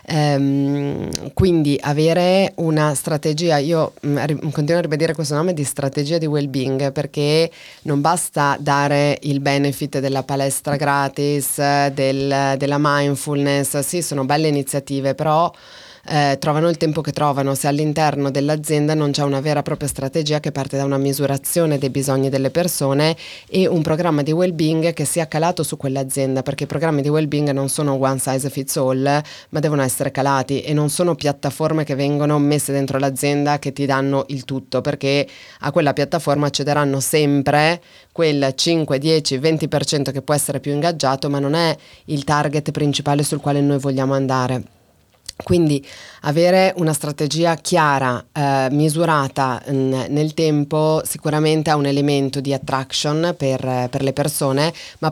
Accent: native